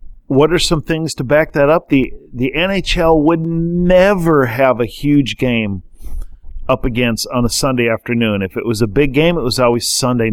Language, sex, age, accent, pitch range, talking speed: English, male, 50-69, American, 110-140 Hz, 190 wpm